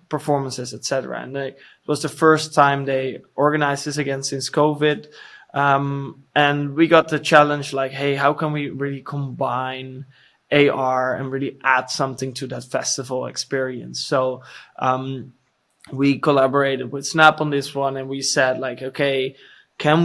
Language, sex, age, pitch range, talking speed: English, male, 20-39, 130-145 Hz, 155 wpm